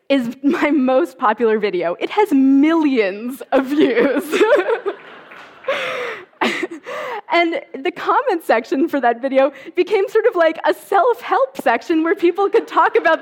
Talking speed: 130 wpm